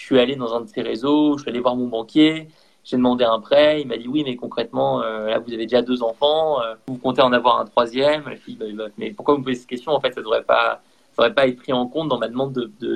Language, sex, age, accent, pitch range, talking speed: French, male, 20-39, French, 130-185 Hz, 310 wpm